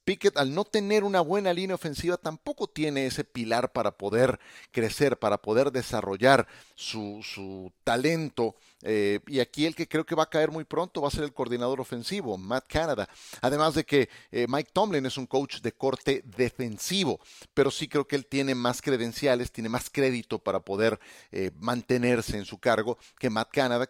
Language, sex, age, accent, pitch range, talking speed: Spanish, male, 40-59, Mexican, 115-150 Hz, 185 wpm